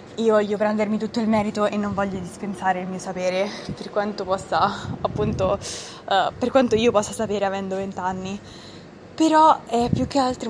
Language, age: Italian, 20-39